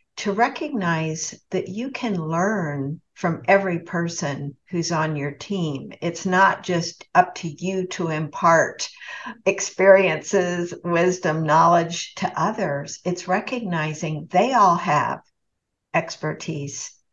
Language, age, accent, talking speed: English, 60-79, American, 110 wpm